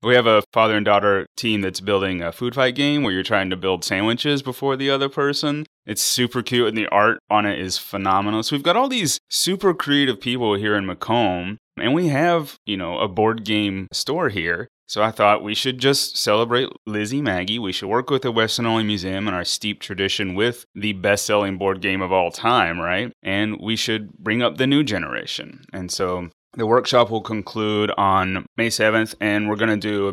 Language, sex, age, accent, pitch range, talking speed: English, male, 30-49, American, 95-120 Hz, 215 wpm